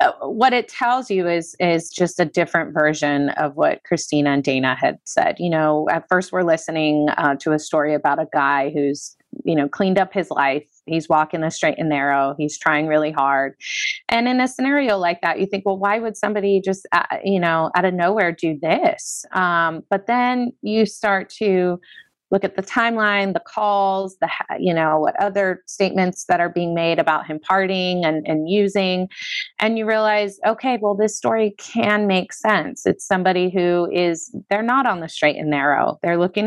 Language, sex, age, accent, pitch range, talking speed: English, female, 30-49, American, 160-200 Hz, 195 wpm